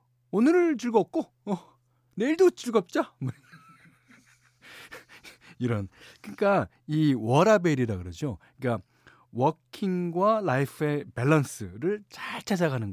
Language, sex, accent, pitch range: Korean, male, native, 120-170 Hz